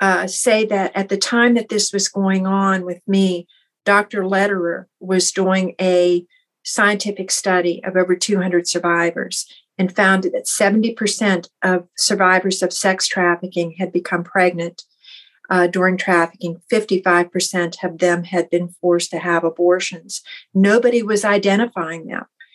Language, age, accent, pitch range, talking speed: English, 50-69, American, 175-195 Hz, 140 wpm